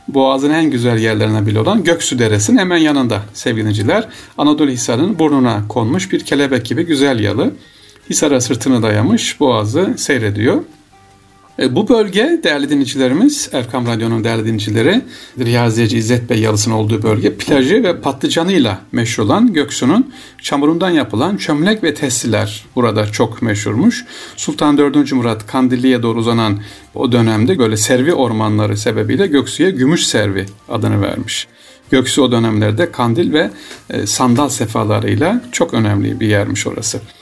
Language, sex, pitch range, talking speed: Turkish, male, 110-140 Hz, 135 wpm